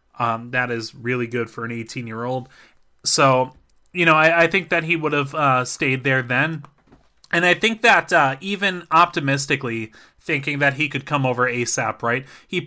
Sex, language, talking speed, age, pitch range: male, English, 180 wpm, 20-39, 125-170 Hz